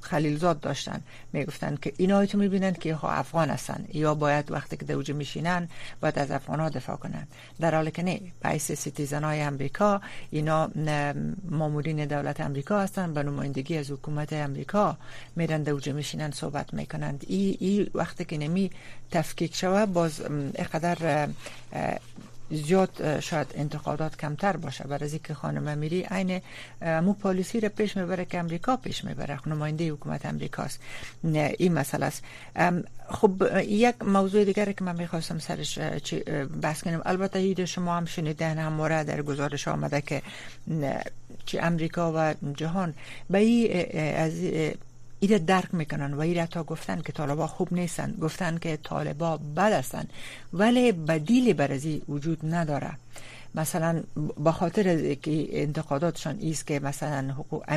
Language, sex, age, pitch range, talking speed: Persian, female, 60-79, 145-180 Hz, 145 wpm